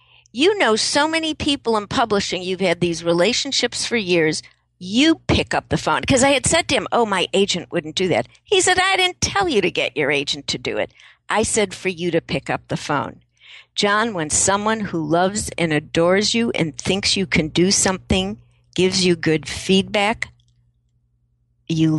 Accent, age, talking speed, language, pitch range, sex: American, 60-79, 195 wpm, English, 150-215 Hz, female